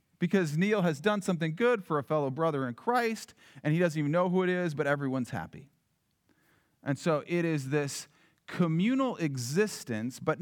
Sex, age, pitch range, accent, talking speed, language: male, 40-59, 130-180 Hz, American, 180 wpm, English